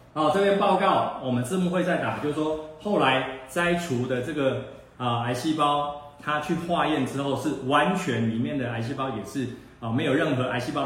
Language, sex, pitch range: Chinese, male, 115-150 Hz